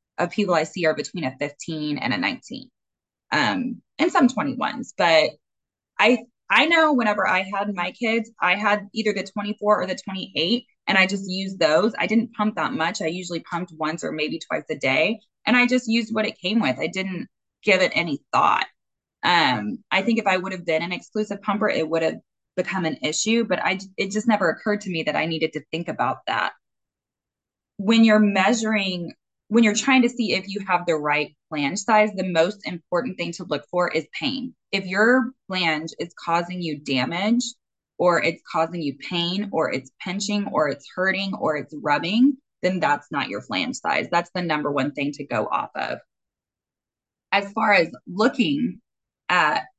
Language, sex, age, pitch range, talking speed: English, female, 20-39, 165-225 Hz, 195 wpm